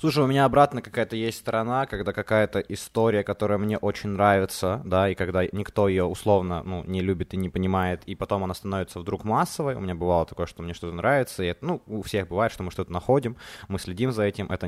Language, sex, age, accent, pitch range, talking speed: Ukrainian, male, 20-39, native, 95-115 Hz, 225 wpm